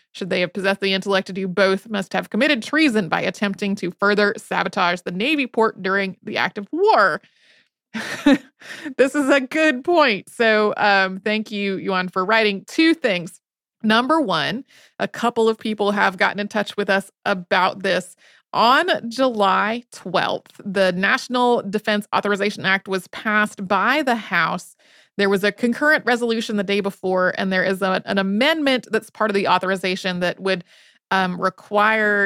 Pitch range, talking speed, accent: 190-225 Hz, 165 wpm, American